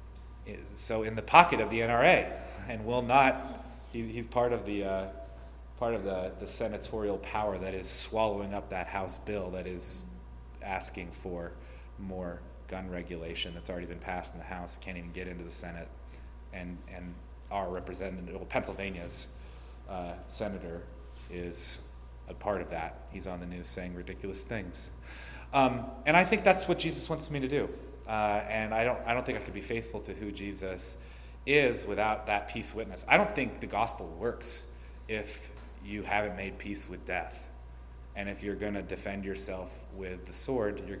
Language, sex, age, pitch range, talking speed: English, male, 30-49, 65-105 Hz, 180 wpm